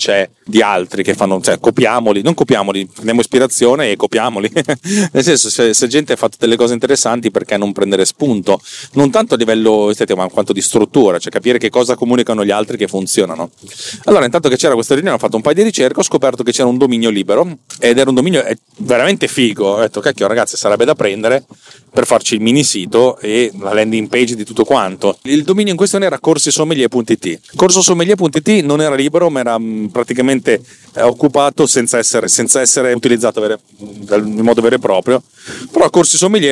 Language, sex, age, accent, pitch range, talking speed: Italian, male, 30-49, native, 110-145 Hz, 185 wpm